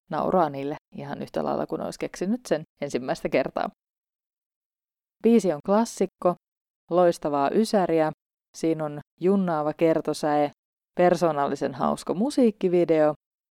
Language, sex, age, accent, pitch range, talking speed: Finnish, female, 30-49, native, 145-190 Hz, 100 wpm